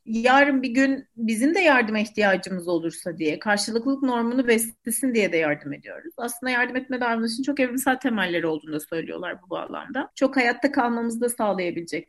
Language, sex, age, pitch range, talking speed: Turkish, female, 40-59, 220-265 Hz, 165 wpm